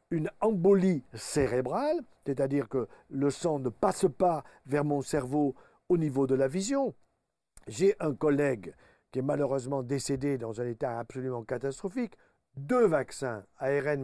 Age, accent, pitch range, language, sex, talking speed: 50-69, French, 140-200 Hz, French, male, 140 wpm